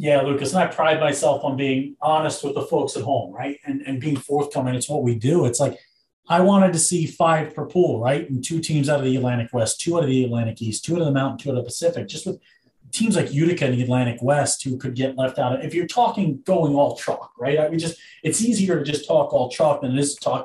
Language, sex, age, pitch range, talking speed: English, male, 30-49, 135-185 Hz, 275 wpm